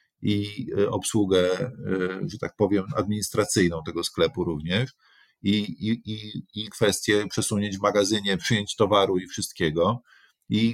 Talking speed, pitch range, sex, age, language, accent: 115 wpm, 95-130 Hz, male, 40-59, Polish, native